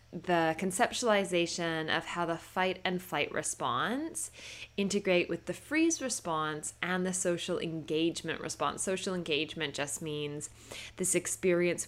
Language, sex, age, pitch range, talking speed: English, female, 10-29, 150-185 Hz, 125 wpm